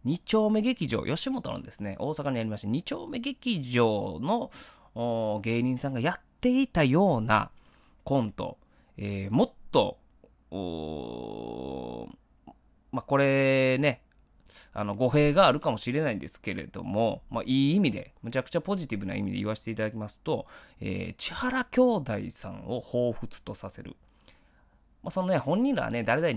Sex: male